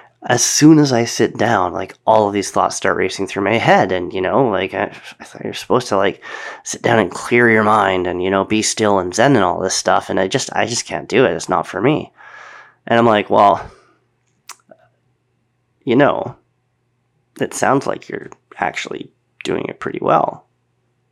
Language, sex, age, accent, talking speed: English, male, 30-49, American, 200 wpm